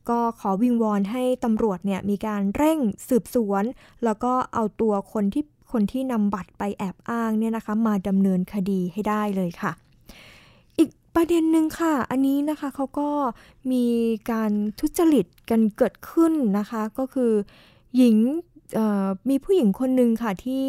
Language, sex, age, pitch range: Thai, female, 20-39, 210-255 Hz